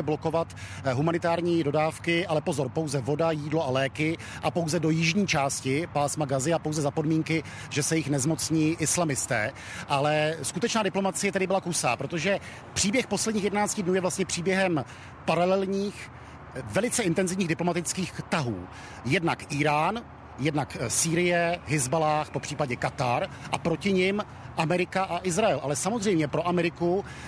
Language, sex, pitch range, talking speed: Czech, male, 145-175 Hz, 140 wpm